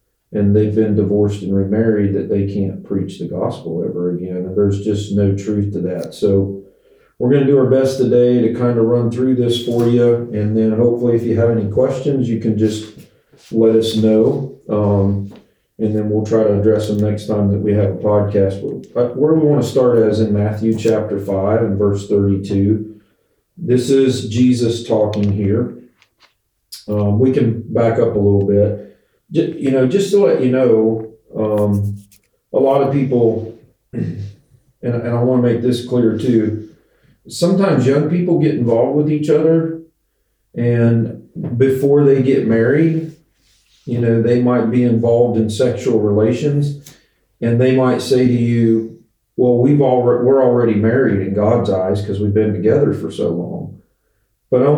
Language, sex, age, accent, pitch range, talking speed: English, male, 40-59, American, 105-125 Hz, 170 wpm